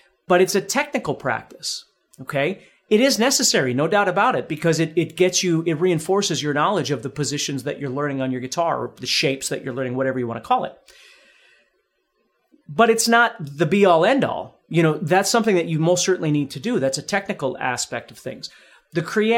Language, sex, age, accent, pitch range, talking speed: English, male, 40-59, American, 145-200 Hz, 205 wpm